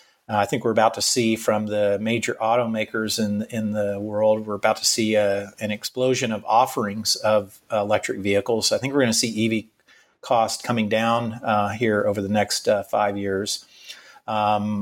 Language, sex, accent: English, male, American